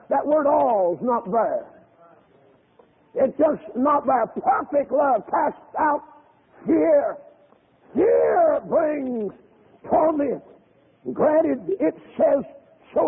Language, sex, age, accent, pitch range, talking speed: English, male, 60-79, American, 290-330 Hz, 100 wpm